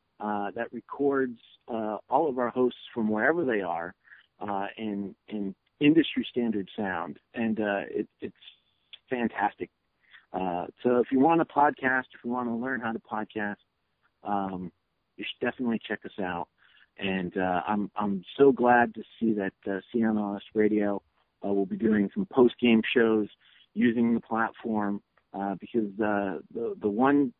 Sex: male